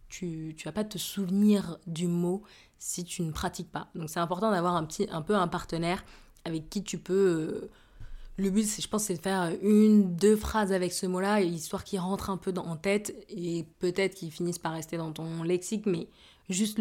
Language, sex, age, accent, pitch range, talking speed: French, female, 20-39, French, 165-195 Hz, 220 wpm